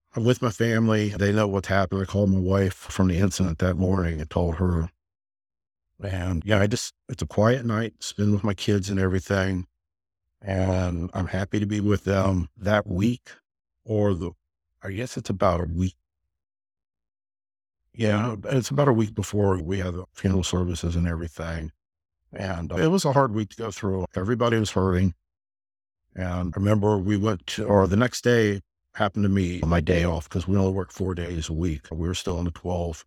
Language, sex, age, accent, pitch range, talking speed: English, male, 50-69, American, 85-105 Hz, 195 wpm